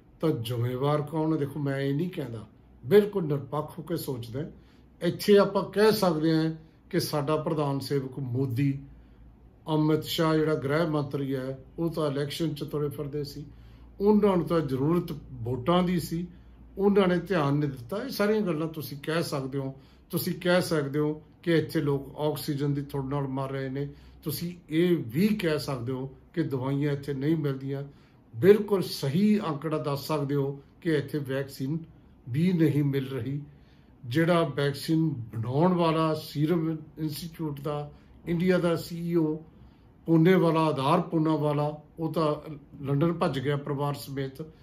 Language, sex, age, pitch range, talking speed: Punjabi, male, 50-69, 140-165 Hz, 145 wpm